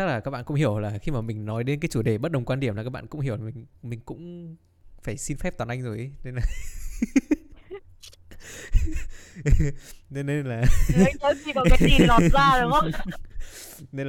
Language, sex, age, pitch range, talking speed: Vietnamese, male, 20-39, 90-140 Hz, 165 wpm